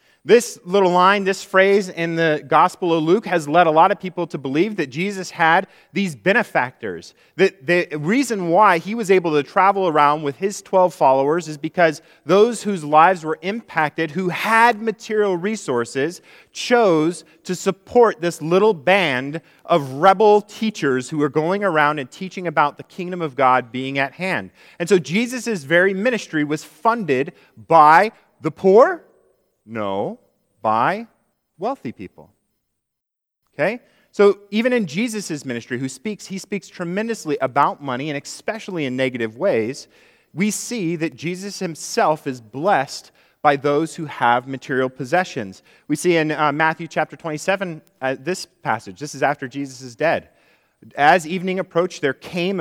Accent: American